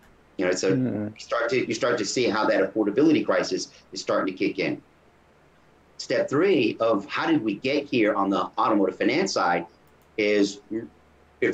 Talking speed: 180 wpm